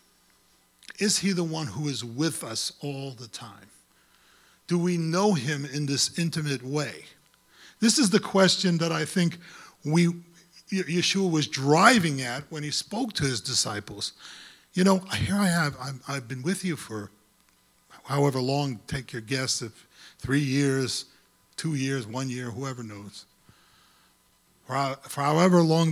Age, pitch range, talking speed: 40-59, 130-170 Hz, 150 wpm